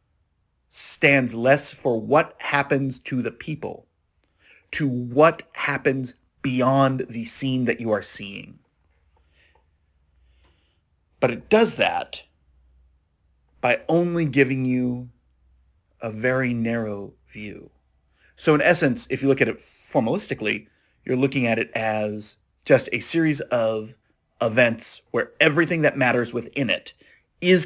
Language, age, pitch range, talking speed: English, 30-49, 100-140 Hz, 120 wpm